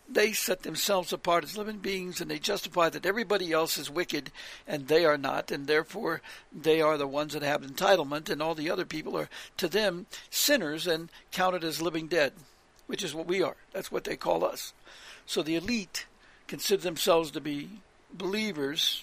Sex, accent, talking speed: male, American, 190 wpm